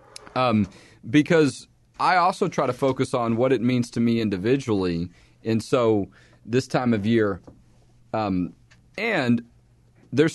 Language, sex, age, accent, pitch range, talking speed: English, male, 40-59, American, 120-150 Hz, 135 wpm